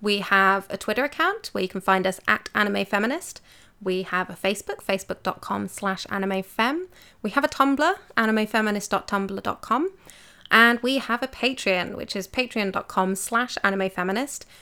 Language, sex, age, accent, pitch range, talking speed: English, female, 20-39, British, 185-225 Hz, 150 wpm